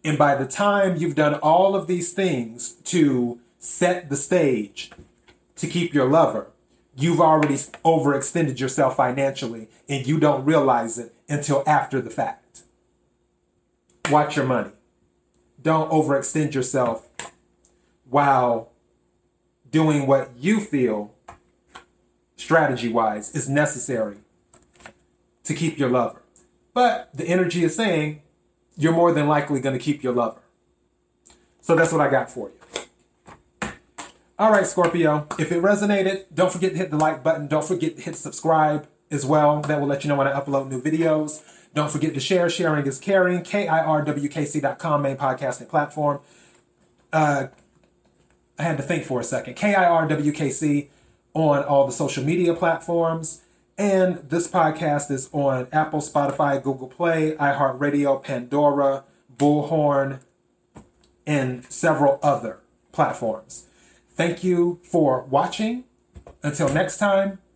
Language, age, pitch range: English, 30-49, 135-165 Hz